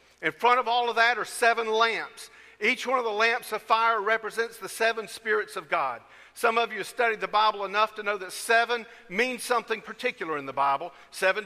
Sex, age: male, 50-69